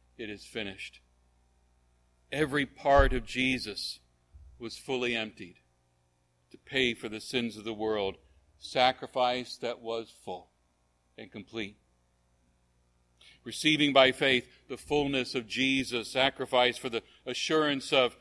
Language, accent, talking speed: English, American, 115 wpm